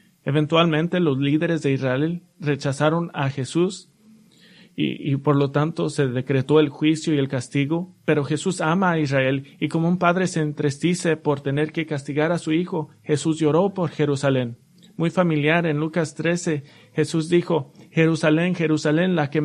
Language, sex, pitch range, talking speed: English, male, 150-170 Hz, 165 wpm